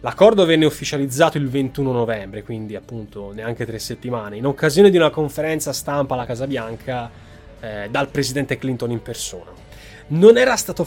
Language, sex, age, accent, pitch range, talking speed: Italian, male, 20-39, native, 125-160 Hz, 160 wpm